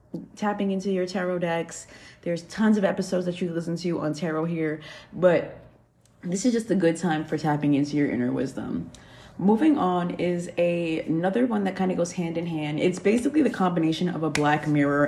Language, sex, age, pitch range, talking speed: English, female, 20-39, 150-180 Hz, 200 wpm